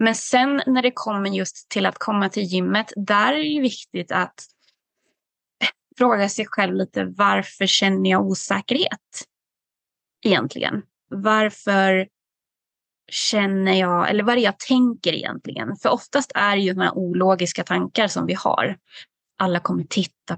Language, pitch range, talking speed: Swedish, 185-240 Hz, 145 wpm